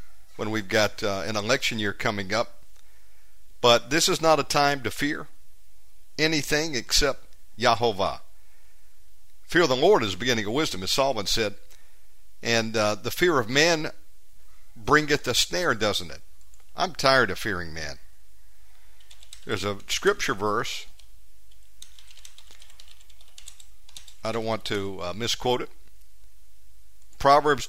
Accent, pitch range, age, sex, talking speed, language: American, 95-145 Hz, 50-69, male, 130 wpm, English